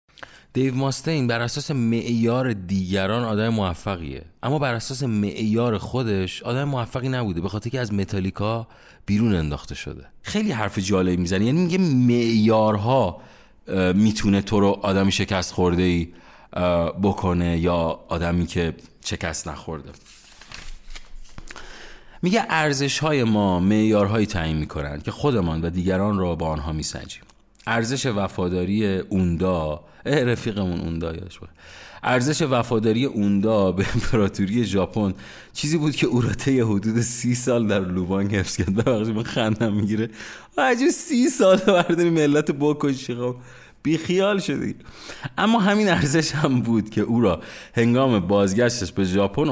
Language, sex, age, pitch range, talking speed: Persian, male, 30-49, 90-125 Hz, 130 wpm